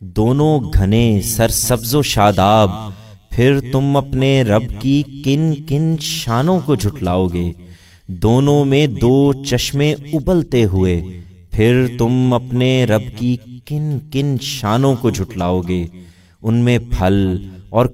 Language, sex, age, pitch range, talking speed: Urdu, male, 30-49, 100-140 Hz, 130 wpm